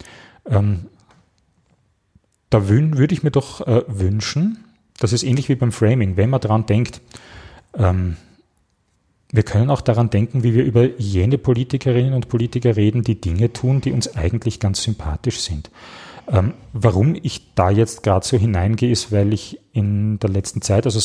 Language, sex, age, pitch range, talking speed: German, male, 30-49, 100-125 Hz, 160 wpm